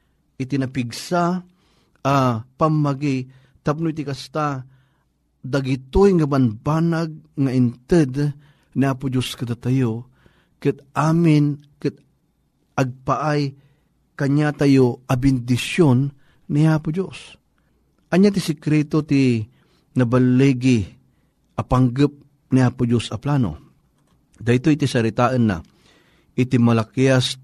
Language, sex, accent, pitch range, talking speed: Filipino, male, native, 125-150 Hz, 90 wpm